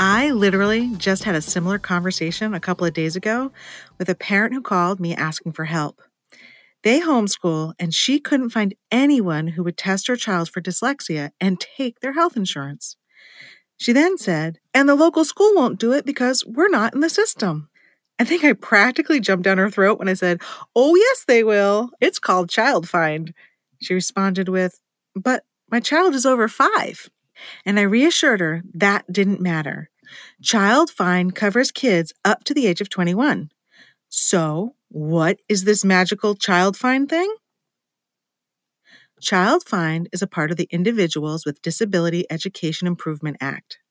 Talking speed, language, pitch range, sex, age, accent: 165 wpm, English, 175-250 Hz, female, 40-59, American